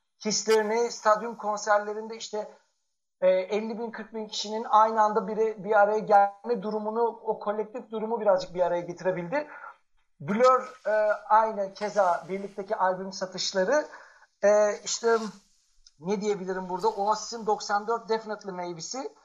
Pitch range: 200-235 Hz